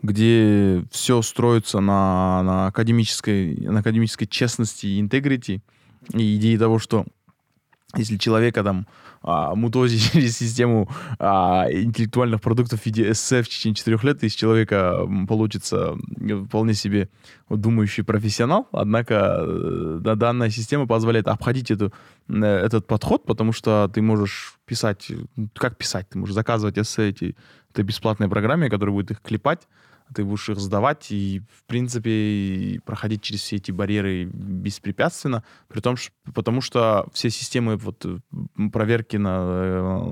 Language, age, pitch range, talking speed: Russian, 20-39, 100-115 Hz, 125 wpm